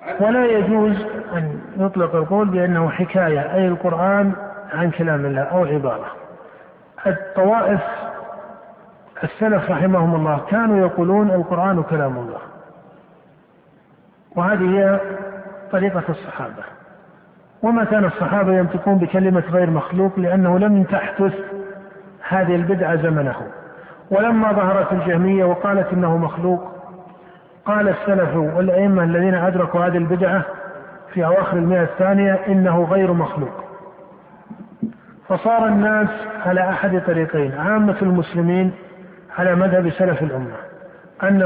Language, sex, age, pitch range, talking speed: Arabic, male, 50-69, 175-195 Hz, 105 wpm